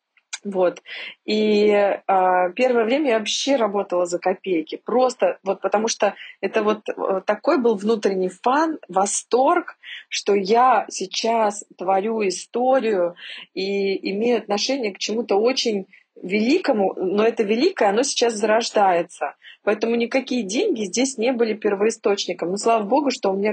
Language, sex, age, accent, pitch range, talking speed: Russian, female, 20-39, native, 185-230 Hz, 135 wpm